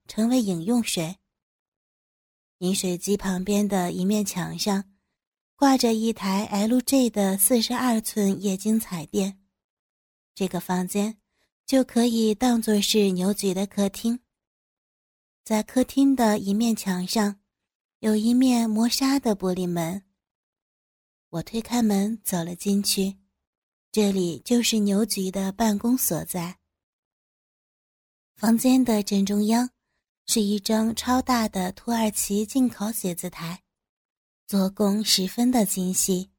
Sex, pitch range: female, 190-225 Hz